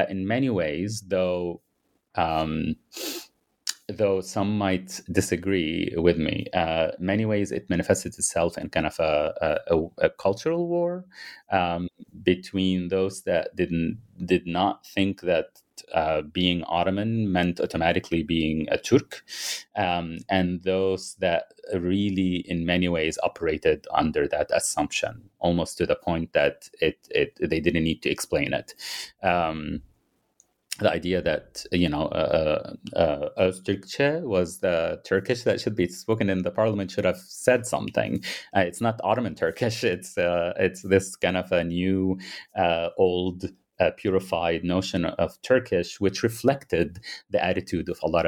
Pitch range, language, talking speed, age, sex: 90-110 Hz, English, 145 wpm, 30-49, male